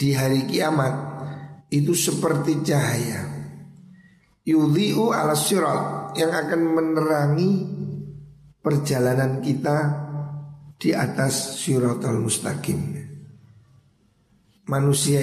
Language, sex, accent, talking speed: Indonesian, male, native, 75 wpm